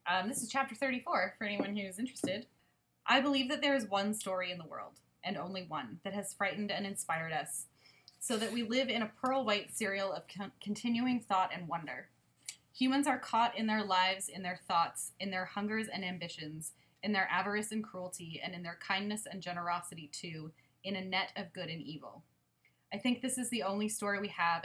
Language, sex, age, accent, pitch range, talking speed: English, female, 20-39, American, 175-205 Hz, 200 wpm